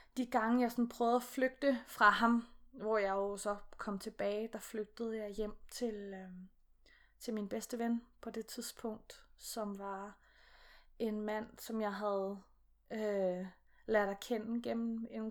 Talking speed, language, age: 155 wpm, Danish, 20-39